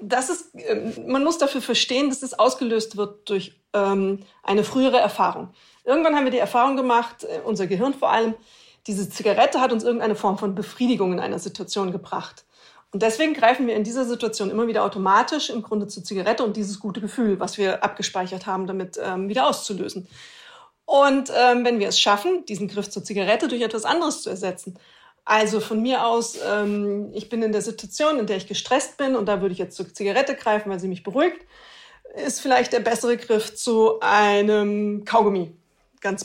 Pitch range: 205-255 Hz